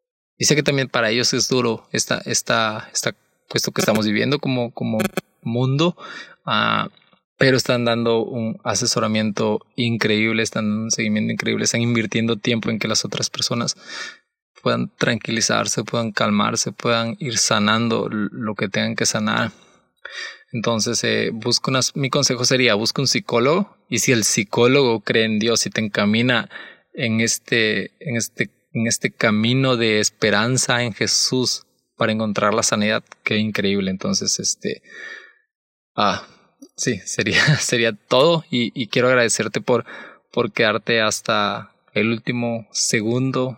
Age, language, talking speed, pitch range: 20-39, Spanish, 145 wpm, 110-130 Hz